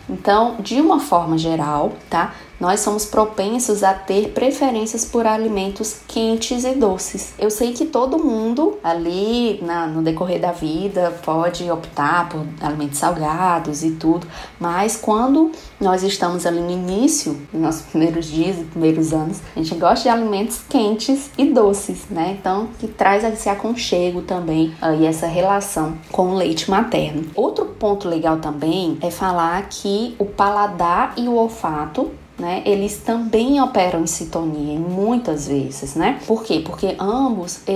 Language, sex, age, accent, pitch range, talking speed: Portuguese, female, 20-39, Brazilian, 170-230 Hz, 155 wpm